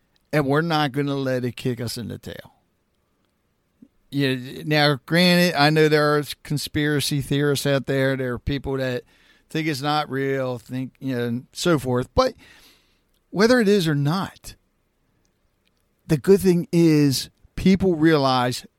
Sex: male